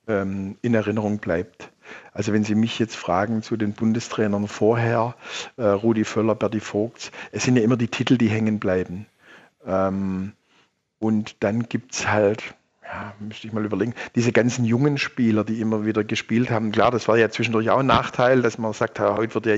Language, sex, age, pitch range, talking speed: German, male, 50-69, 110-130 Hz, 180 wpm